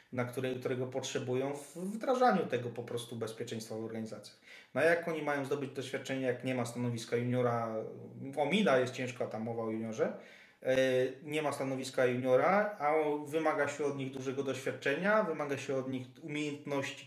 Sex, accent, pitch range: male, native, 125-160 Hz